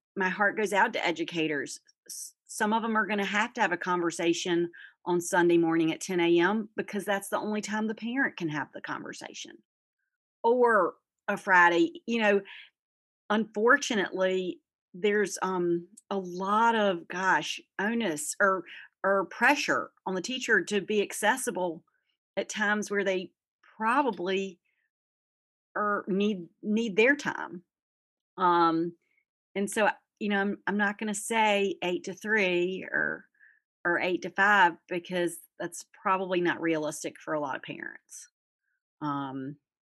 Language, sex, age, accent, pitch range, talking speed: English, female, 40-59, American, 165-210 Hz, 145 wpm